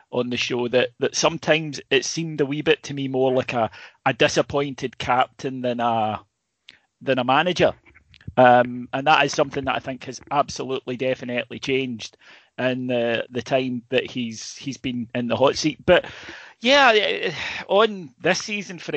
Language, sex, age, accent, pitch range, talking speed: English, male, 30-49, British, 125-140 Hz, 170 wpm